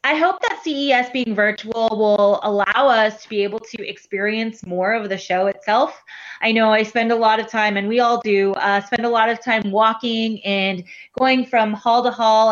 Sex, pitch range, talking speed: female, 200-230 Hz, 210 wpm